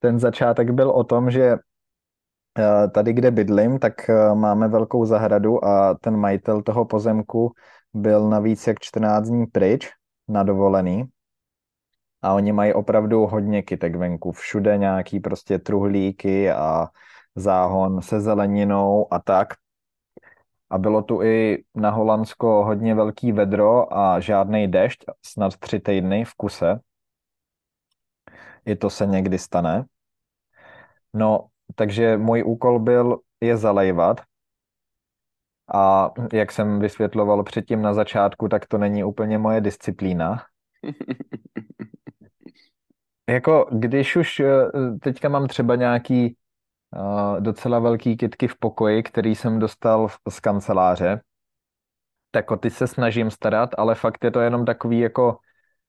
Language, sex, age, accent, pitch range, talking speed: Czech, male, 20-39, native, 100-115 Hz, 120 wpm